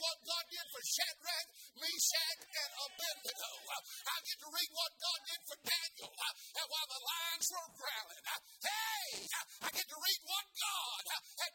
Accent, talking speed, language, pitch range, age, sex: American, 160 wpm, English, 215-355 Hz, 50-69, male